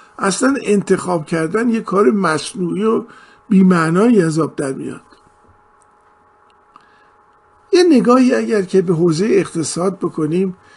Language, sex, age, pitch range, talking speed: Persian, male, 50-69, 170-215 Hz, 105 wpm